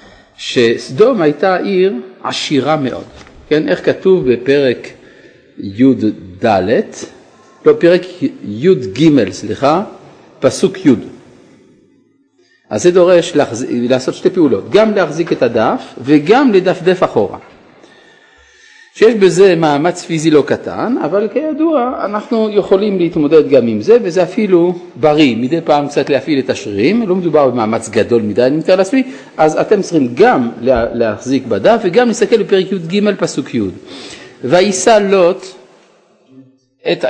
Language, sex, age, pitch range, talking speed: Hebrew, male, 50-69, 145-215 Hz, 125 wpm